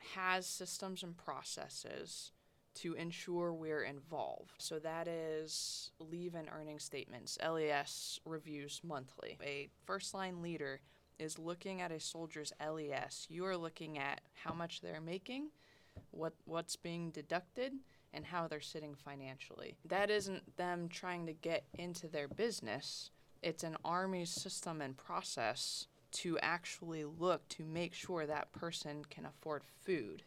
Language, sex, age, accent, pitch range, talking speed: English, female, 20-39, American, 150-180 Hz, 135 wpm